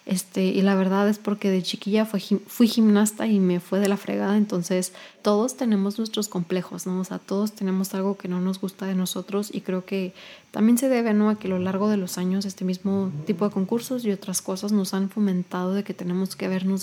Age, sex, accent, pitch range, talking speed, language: 20-39, female, Mexican, 190-215 Hz, 235 wpm, Spanish